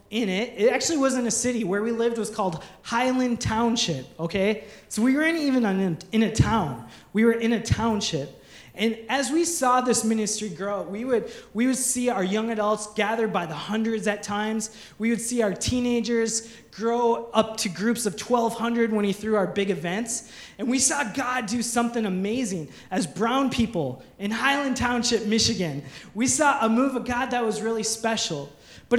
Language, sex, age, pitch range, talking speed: English, male, 20-39, 200-245 Hz, 185 wpm